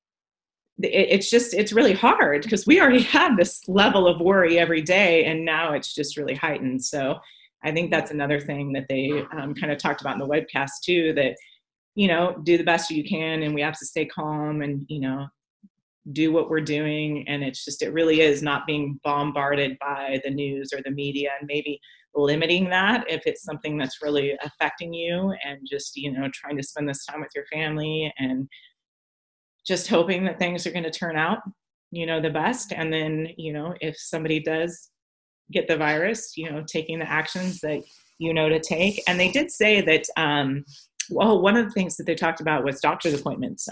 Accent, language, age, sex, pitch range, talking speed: American, English, 30-49, female, 145-170 Hz, 205 wpm